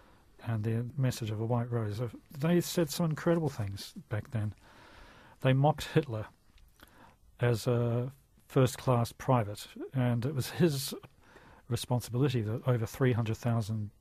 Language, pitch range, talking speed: English, 110-130 Hz, 125 wpm